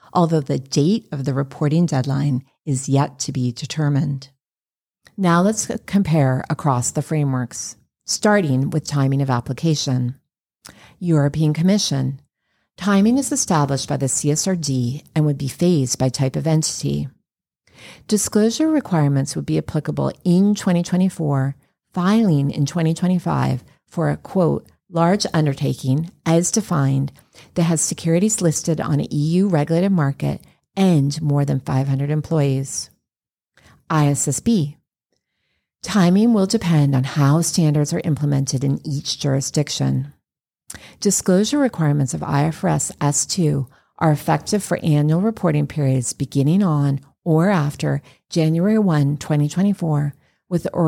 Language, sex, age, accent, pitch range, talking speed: English, female, 40-59, American, 140-175 Hz, 115 wpm